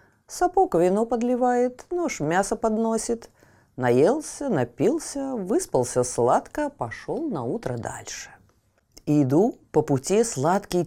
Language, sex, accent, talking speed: Russian, female, native, 100 wpm